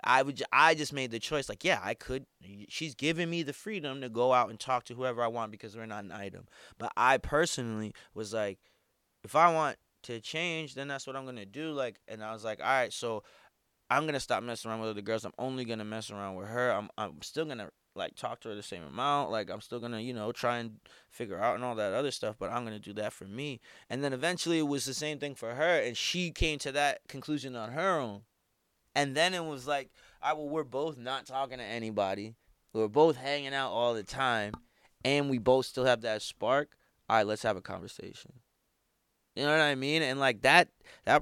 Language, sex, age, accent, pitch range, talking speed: English, male, 20-39, American, 110-140 Hz, 235 wpm